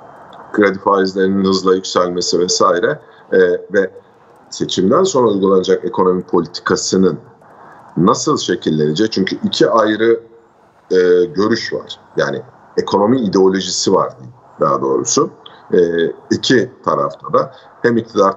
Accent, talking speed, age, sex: native, 105 wpm, 50-69, male